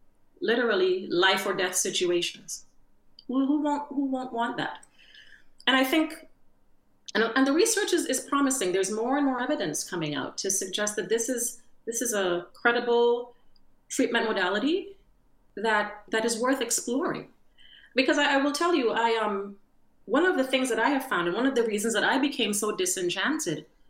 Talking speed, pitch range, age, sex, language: 180 wpm, 215-290 Hz, 40-59, female, English